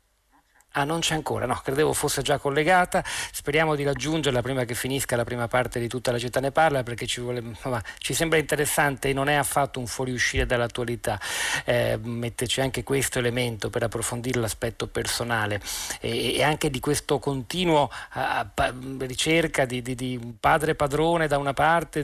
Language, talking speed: Italian, 170 wpm